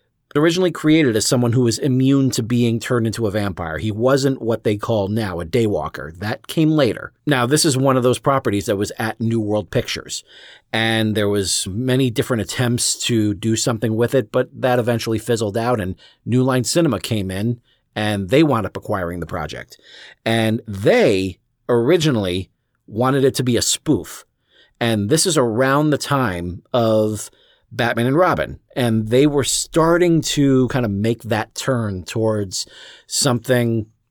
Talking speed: 170 wpm